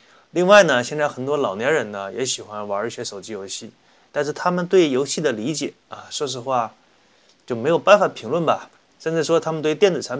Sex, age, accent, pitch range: male, 20-39, native, 120-160 Hz